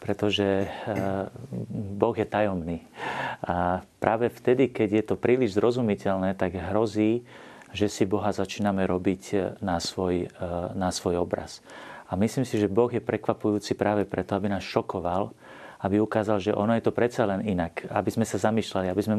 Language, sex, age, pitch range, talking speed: Slovak, male, 40-59, 100-110 Hz, 160 wpm